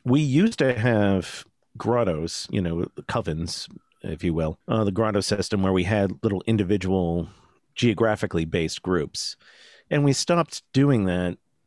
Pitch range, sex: 85-115 Hz, male